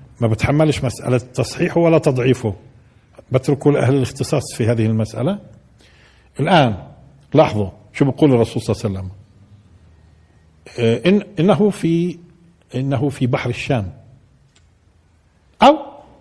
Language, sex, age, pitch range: Arabic, male, 50-69, 110-150 Hz